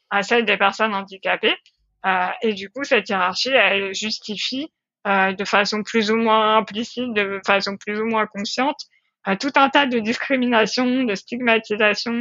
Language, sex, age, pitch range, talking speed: French, female, 20-39, 200-245 Hz, 165 wpm